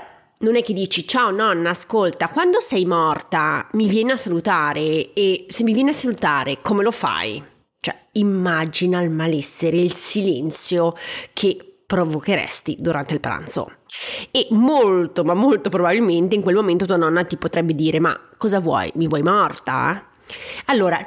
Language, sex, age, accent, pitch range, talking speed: Italian, female, 30-49, native, 170-235 Hz, 155 wpm